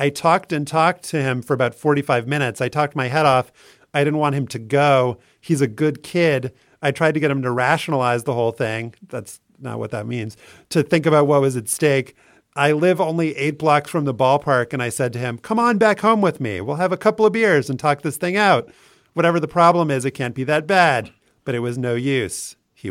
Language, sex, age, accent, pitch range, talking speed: English, male, 40-59, American, 120-150 Hz, 240 wpm